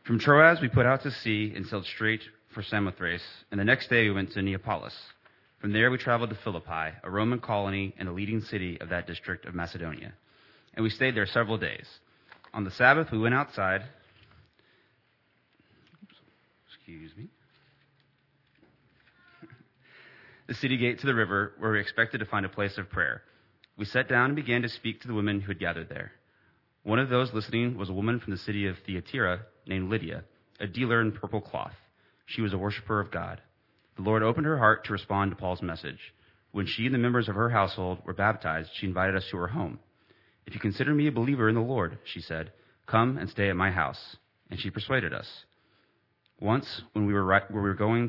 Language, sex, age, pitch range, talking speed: English, male, 30-49, 95-115 Hz, 200 wpm